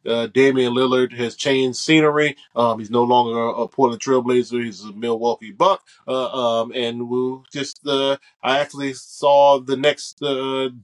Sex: male